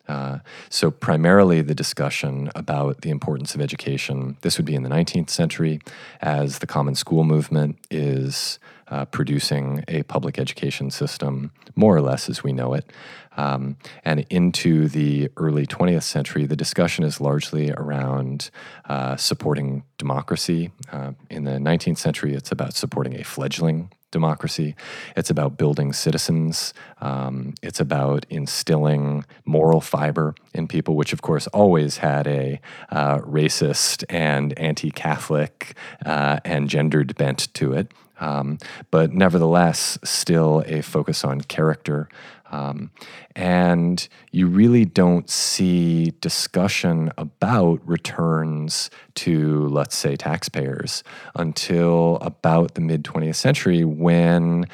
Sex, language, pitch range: male, English, 70-85 Hz